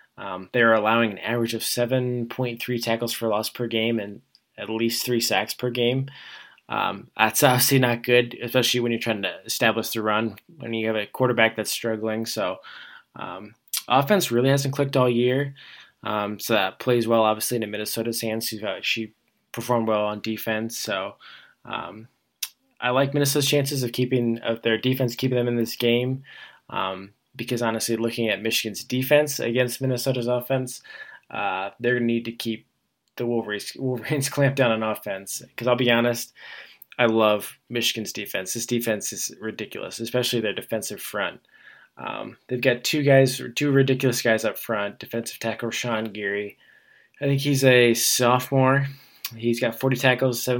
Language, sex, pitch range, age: English, male, 110-125 Hz, 20-39